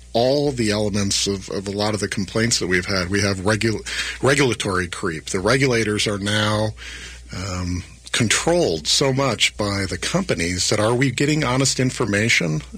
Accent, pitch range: American, 95-125 Hz